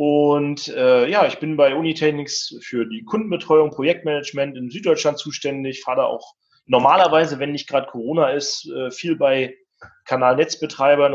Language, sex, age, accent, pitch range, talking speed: German, male, 30-49, German, 130-160 Hz, 145 wpm